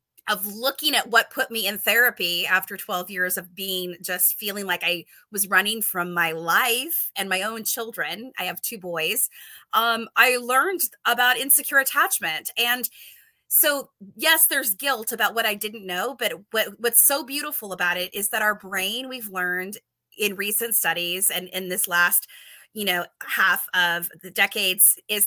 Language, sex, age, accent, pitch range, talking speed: English, female, 20-39, American, 190-245 Hz, 170 wpm